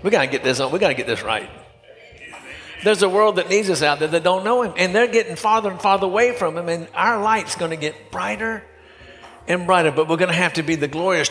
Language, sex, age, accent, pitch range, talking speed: English, male, 60-79, American, 130-195 Hz, 270 wpm